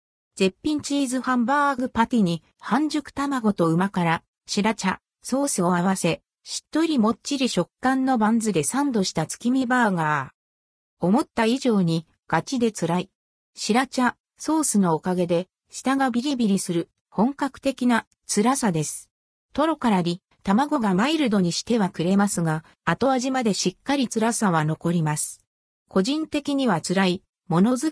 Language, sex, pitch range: Japanese, female, 180-265 Hz